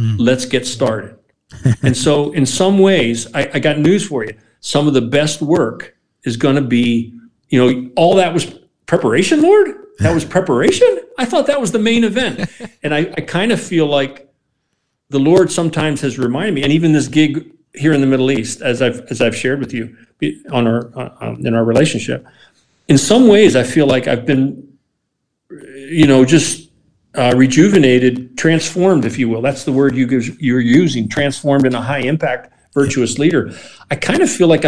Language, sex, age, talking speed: English, male, 50-69, 185 wpm